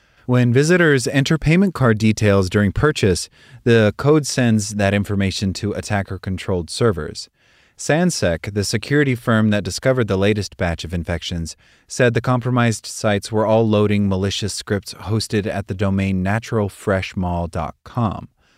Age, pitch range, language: 30-49, 95-120 Hz, English